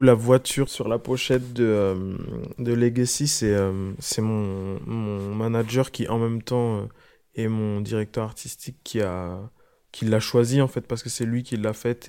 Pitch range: 110-125 Hz